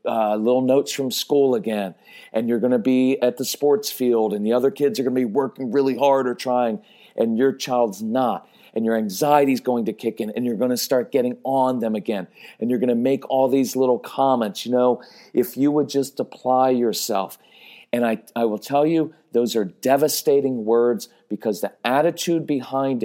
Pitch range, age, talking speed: 115-145 Hz, 40-59, 210 wpm